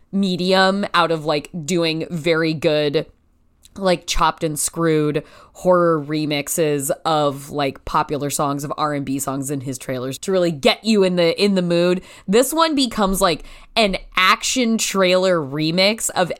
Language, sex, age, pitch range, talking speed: English, female, 10-29, 170-220 Hz, 155 wpm